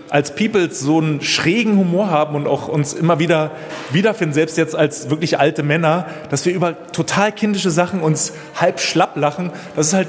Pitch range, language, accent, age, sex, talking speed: 145-175 Hz, German, German, 30-49, male, 190 wpm